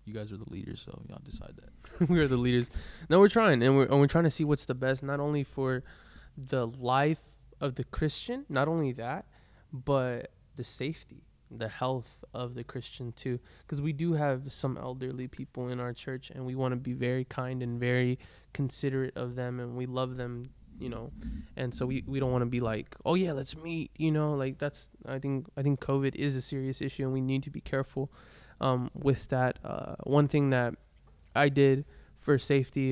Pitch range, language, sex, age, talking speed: 125-140 Hz, English, male, 20-39, 215 wpm